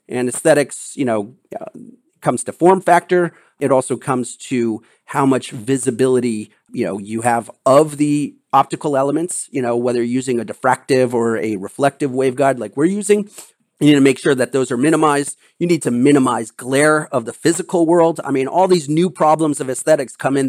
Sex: male